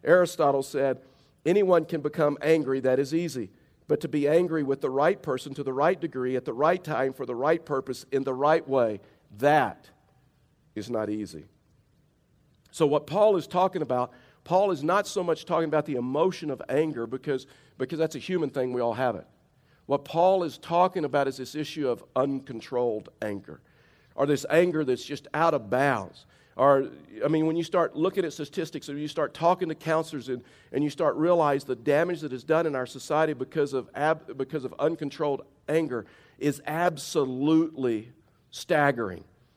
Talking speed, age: 180 wpm, 50-69